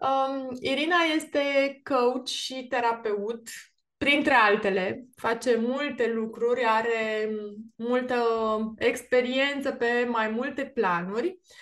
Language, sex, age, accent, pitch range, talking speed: Romanian, female, 20-39, native, 225-275 Hz, 90 wpm